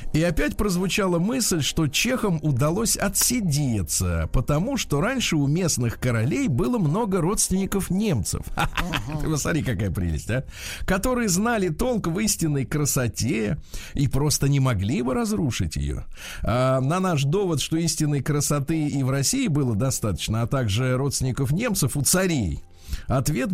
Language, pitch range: Russian, 125-190 Hz